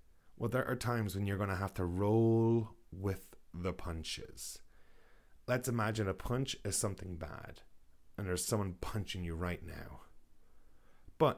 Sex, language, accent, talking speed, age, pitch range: male, English, Irish, 155 wpm, 30-49, 90-115 Hz